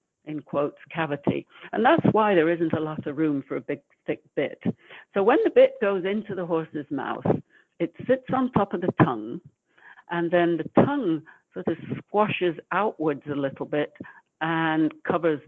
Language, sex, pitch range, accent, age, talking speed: English, female, 145-175 Hz, British, 60-79, 180 wpm